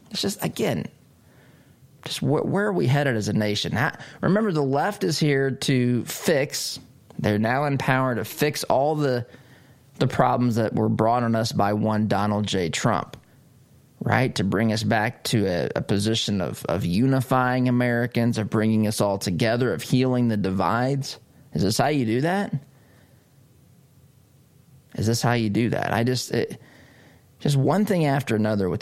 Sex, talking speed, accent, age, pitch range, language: male, 175 wpm, American, 20-39, 110-145 Hz, English